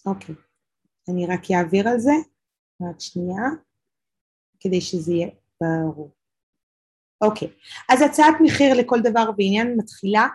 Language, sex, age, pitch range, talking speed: Hebrew, female, 30-49, 190-240 Hz, 130 wpm